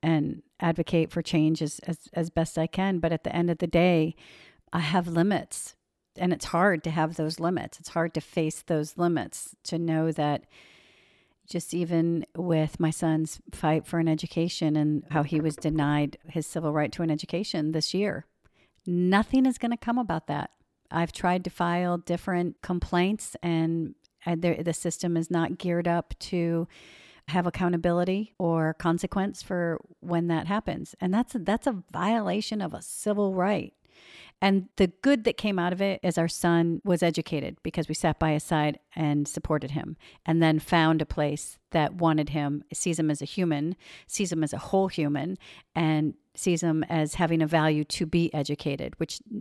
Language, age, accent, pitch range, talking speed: English, 50-69, American, 155-180 Hz, 180 wpm